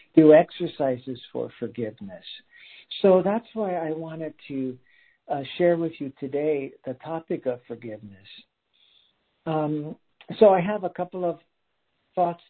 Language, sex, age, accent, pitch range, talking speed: English, male, 60-79, American, 145-185 Hz, 130 wpm